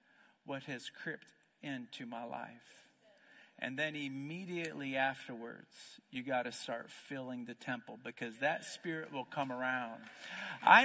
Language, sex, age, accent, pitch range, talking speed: English, male, 50-69, American, 140-220 Hz, 135 wpm